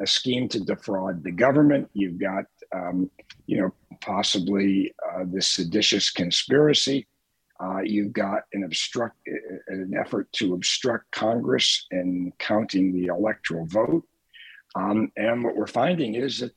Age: 50-69